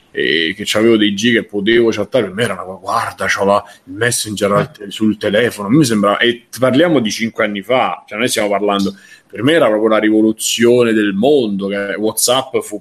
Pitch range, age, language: 100-115 Hz, 30-49, Italian